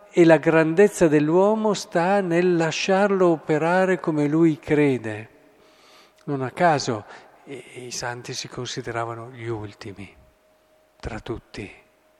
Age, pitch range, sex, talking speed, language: 50-69, 120-155 Hz, male, 115 wpm, Italian